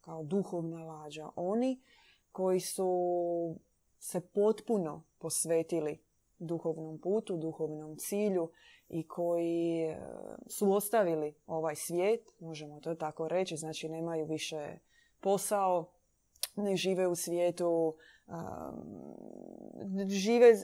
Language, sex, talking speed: Croatian, female, 95 wpm